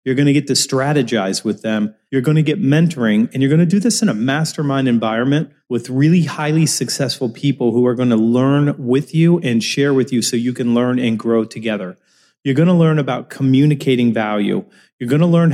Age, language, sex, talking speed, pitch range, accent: 30-49, English, male, 220 wpm, 115-145 Hz, American